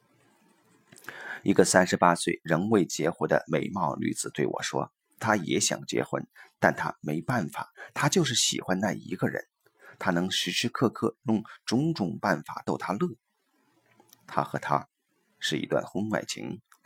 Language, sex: Chinese, male